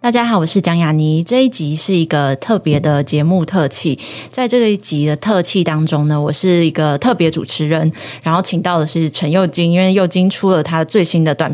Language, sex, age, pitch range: Chinese, female, 20-39, 155-195 Hz